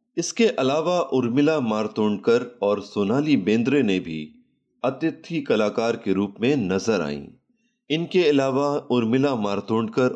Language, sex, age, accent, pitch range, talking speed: Hindi, male, 30-49, native, 110-180 Hz, 120 wpm